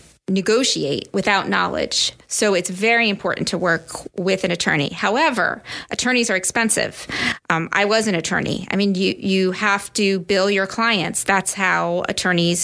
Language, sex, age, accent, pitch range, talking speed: English, female, 30-49, American, 180-205 Hz, 155 wpm